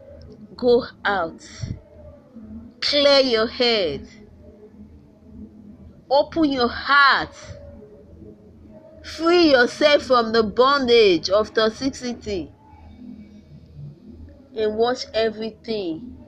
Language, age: English, 30-49